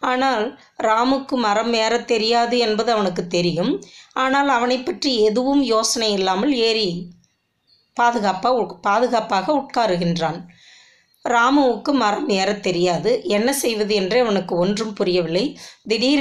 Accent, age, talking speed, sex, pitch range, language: native, 20-39, 105 wpm, female, 190-245 Hz, Tamil